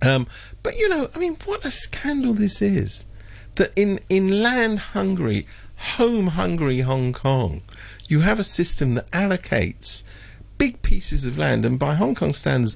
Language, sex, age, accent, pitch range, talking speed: English, male, 50-69, British, 100-145 Hz, 155 wpm